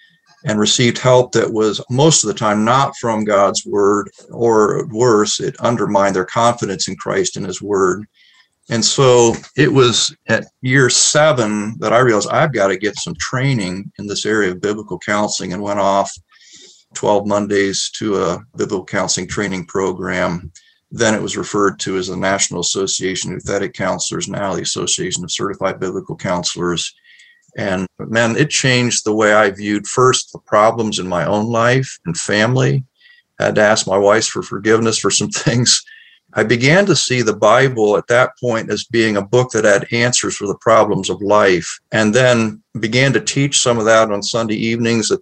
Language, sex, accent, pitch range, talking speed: English, male, American, 105-125 Hz, 180 wpm